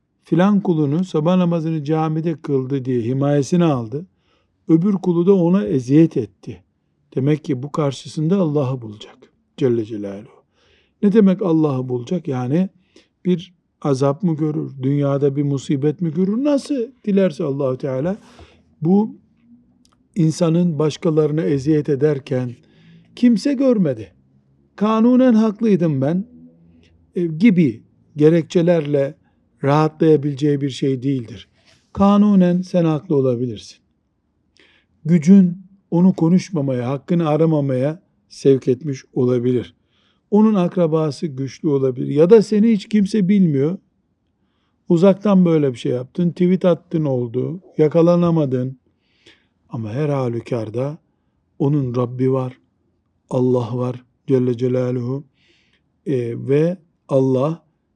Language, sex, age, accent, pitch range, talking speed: Turkish, male, 60-79, native, 130-180 Hz, 105 wpm